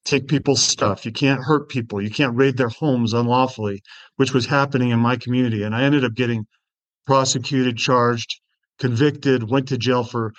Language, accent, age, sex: English, American, 40-59, male